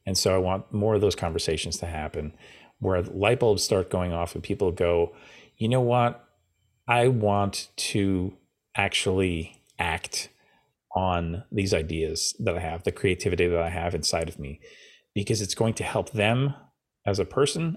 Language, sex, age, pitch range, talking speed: English, male, 30-49, 90-105 Hz, 170 wpm